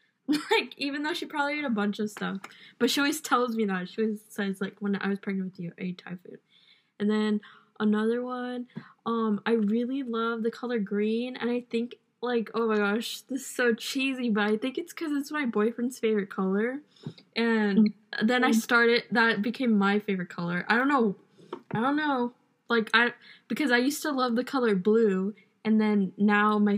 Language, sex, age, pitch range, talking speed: English, female, 10-29, 200-235 Hz, 200 wpm